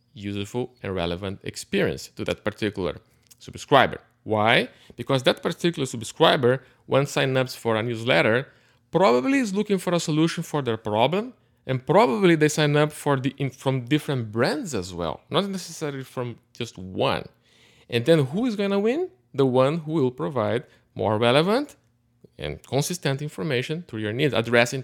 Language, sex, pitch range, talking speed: English, male, 120-155 Hz, 160 wpm